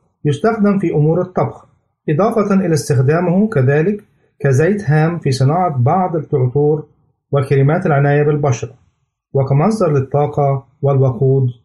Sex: male